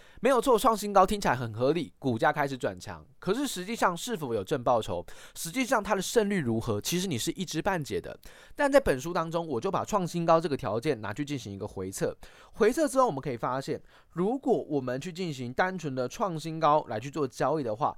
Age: 20-39